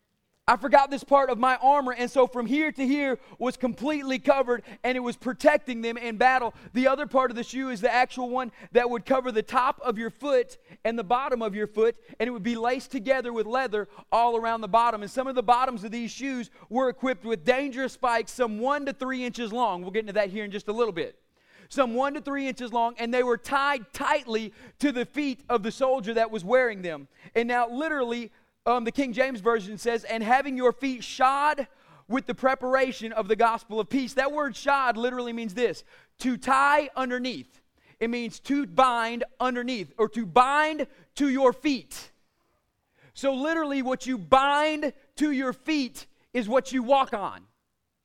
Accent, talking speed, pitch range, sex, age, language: American, 205 wpm, 225-270 Hz, male, 30-49, English